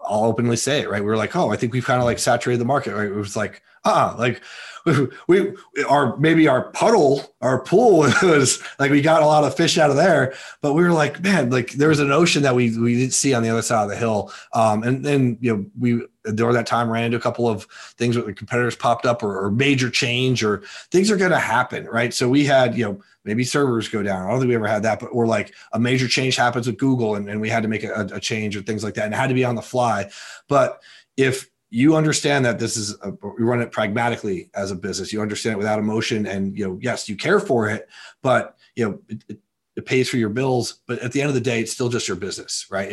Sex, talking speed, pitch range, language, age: male, 265 wpm, 110-130 Hz, English, 30-49